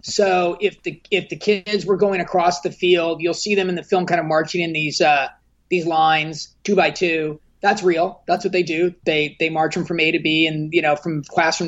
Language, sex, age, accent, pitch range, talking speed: English, male, 30-49, American, 155-195 Hz, 240 wpm